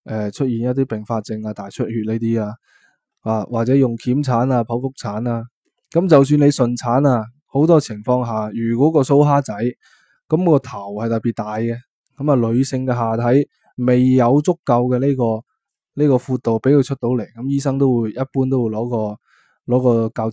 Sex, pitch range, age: male, 115-135 Hz, 20-39